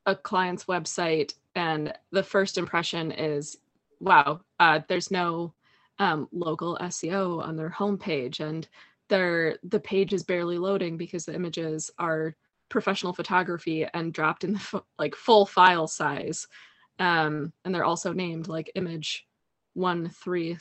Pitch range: 170-210 Hz